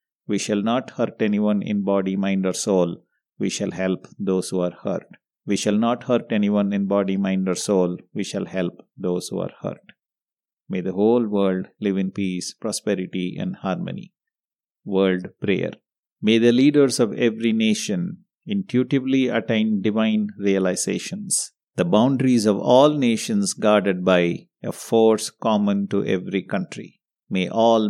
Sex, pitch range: male, 100-120 Hz